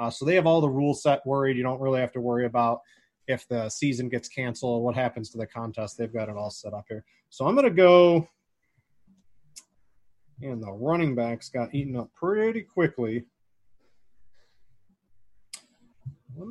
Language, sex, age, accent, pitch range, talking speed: English, male, 30-49, American, 110-135 Hz, 180 wpm